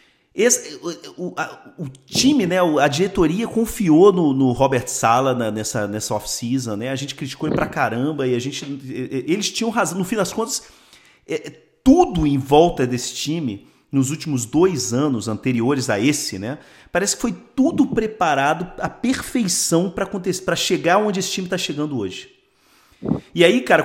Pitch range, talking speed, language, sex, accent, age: 130-195 Hz, 170 wpm, Portuguese, male, Brazilian, 40-59